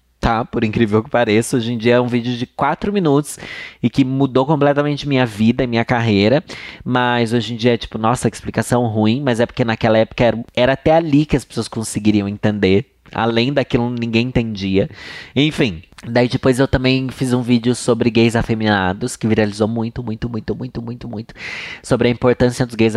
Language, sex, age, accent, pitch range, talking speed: Portuguese, male, 20-39, Brazilian, 115-135 Hz, 200 wpm